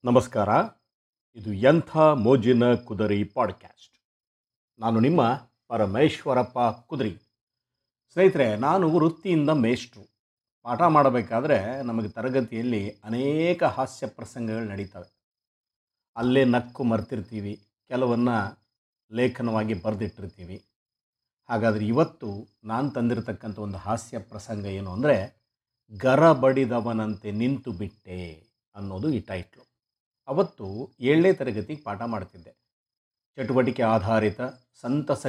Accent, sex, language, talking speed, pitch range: native, male, Kannada, 85 wpm, 105-130 Hz